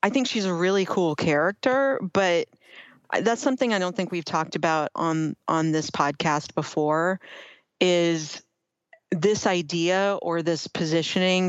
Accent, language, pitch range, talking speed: American, English, 160-205 Hz, 140 wpm